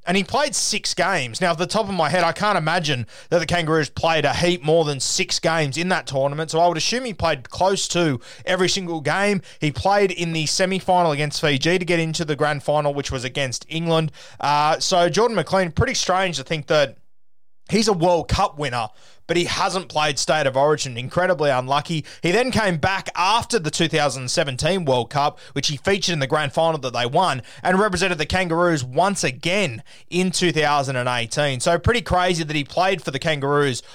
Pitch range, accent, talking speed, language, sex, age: 145-180 Hz, Australian, 205 wpm, English, male, 20-39